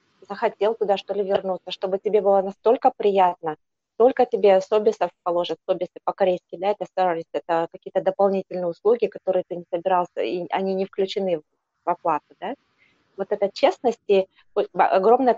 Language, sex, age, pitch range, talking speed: Russian, female, 20-39, 180-205 Hz, 150 wpm